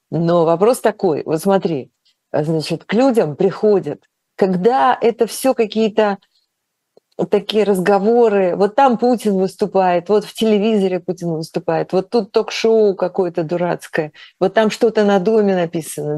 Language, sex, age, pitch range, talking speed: Russian, female, 40-59, 160-215 Hz, 130 wpm